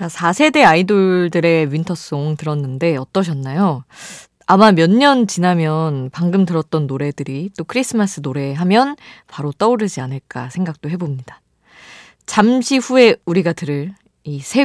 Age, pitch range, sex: 20-39, 150-215 Hz, female